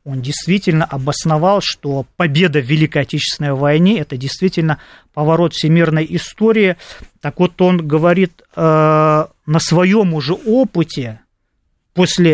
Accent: native